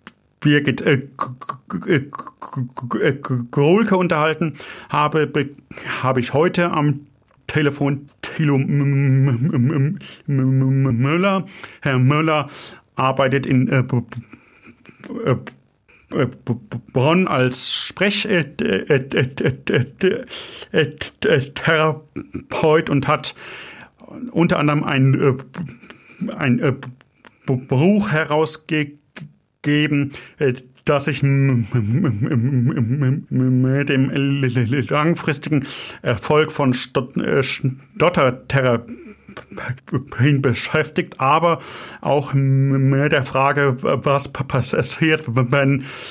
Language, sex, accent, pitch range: German, male, German, 130-150 Hz